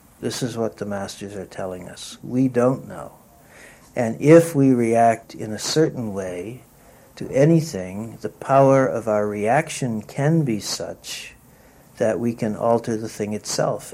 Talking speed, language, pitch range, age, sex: 155 wpm, English, 100-125 Hz, 60-79, male